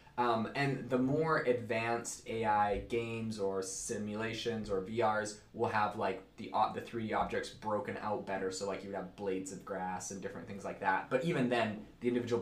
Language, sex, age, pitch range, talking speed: English, male, 20-39, 110-130 Hz, 195 wpm